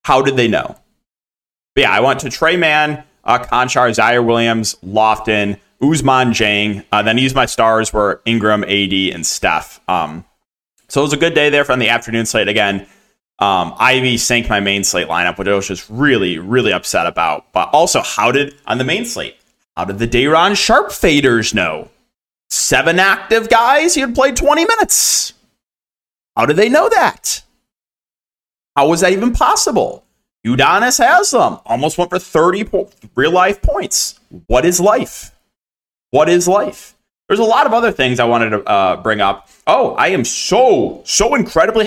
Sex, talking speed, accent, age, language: male, 175 wpm, American, 20-39, English